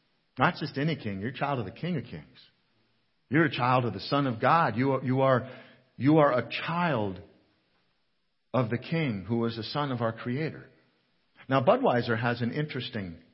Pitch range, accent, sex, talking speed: 110-145 Hz, American, male, 195 wpm